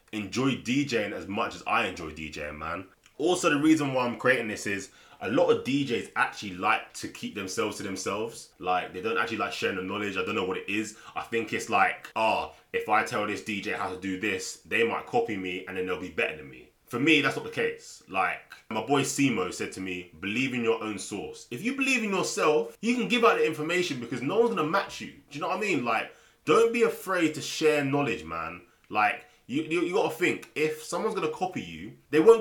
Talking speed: 245 wpm